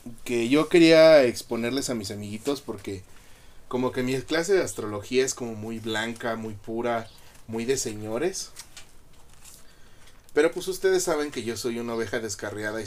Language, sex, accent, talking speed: Spanish, male, Mexican, 160 wpm